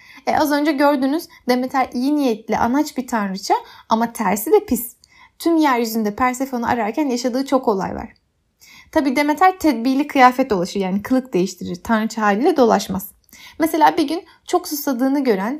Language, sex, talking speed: Turkish, female, 150 wpm